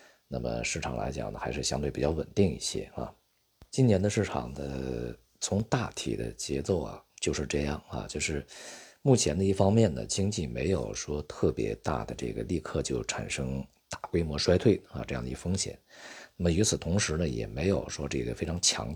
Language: Chinese